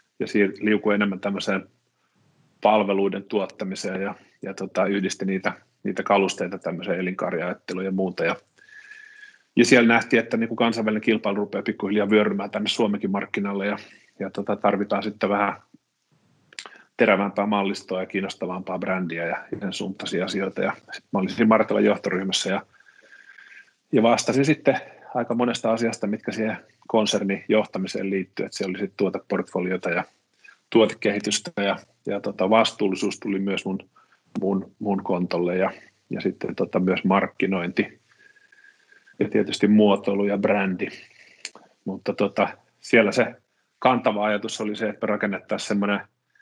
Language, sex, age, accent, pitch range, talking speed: Finnish, male, 30-49, native, 95-110 Hz, 130 wpm